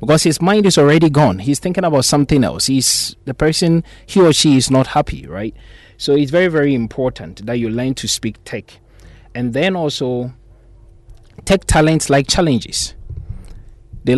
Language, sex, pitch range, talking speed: English, male, 110-150 Hz, 170 wpm